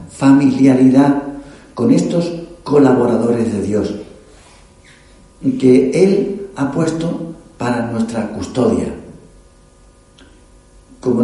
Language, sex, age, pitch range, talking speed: Spanish, male, 60-79, 80-135 Hz, 75 wpm